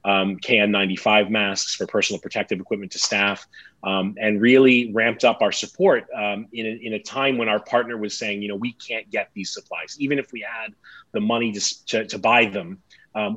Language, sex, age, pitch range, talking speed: English, male, 30-49, 100-120 Hz, 205 wpm